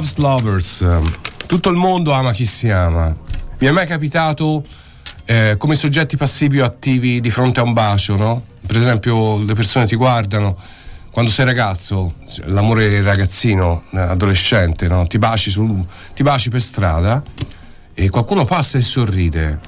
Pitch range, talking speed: 90-130 Hz, 155 wpm